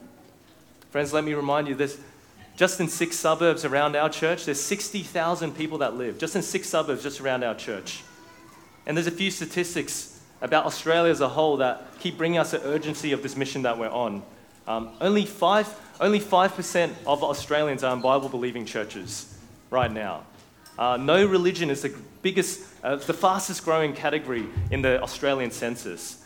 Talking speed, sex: 170 wpm, male